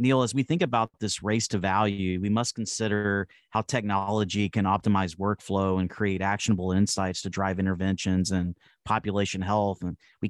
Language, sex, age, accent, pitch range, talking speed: English, male, 30-49, American, 95-110 Hz, 170 wpm